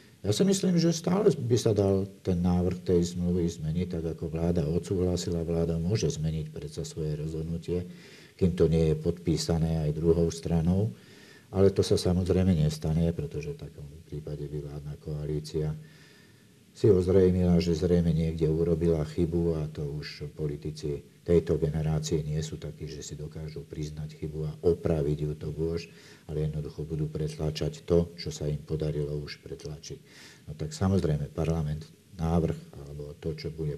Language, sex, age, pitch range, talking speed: Slovak, male, 50-69, 75-90 Hz, 160 wpm